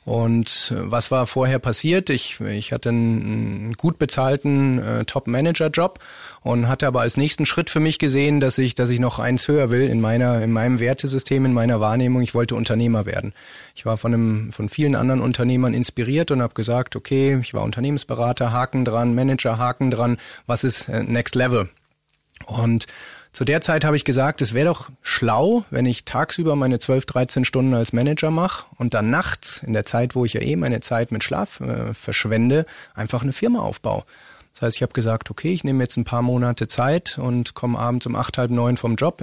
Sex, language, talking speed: male, German, 200 wpm